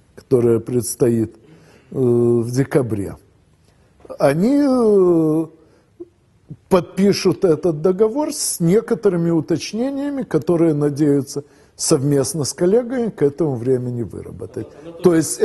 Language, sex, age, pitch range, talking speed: Russian, male, 50-69, 120-165 Hz, 95 wpm